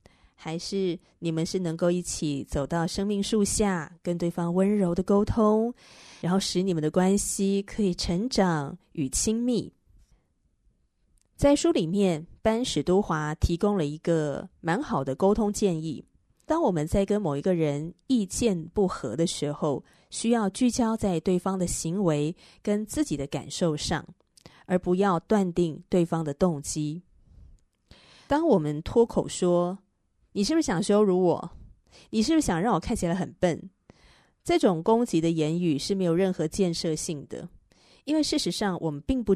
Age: 20-39